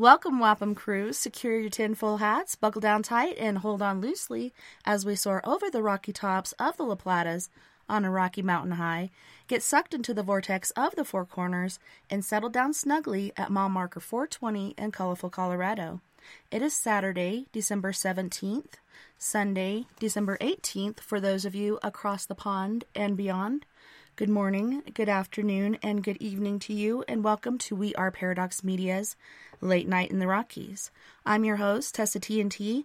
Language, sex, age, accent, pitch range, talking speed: English, female, 30-49, American, 195-230 Hz, 175 wpm